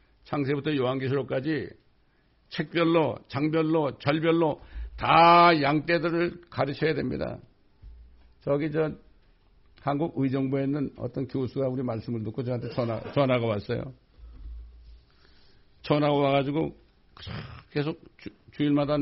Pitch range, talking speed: 110-145 Hz, 80 wpm